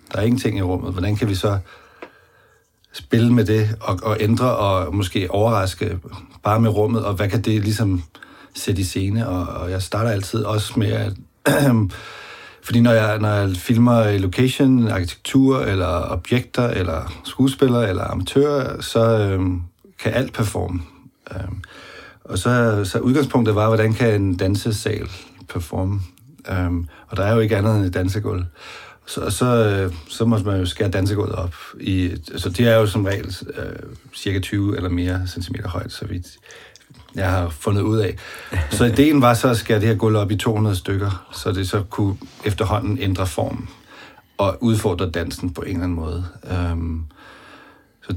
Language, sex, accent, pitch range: Danish, male, native, 90-115 Hz